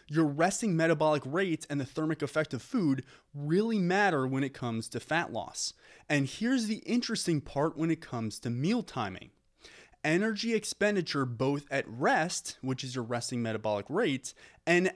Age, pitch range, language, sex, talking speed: 20-39, 125-165 Hz, English, male, 165 wpm